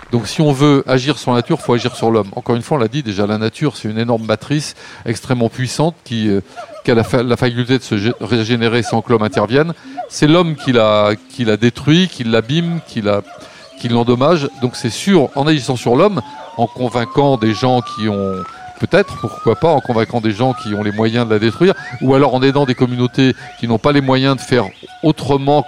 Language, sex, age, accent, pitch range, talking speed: French, male, 40-59, French, 115-145 Hz, 230 wpm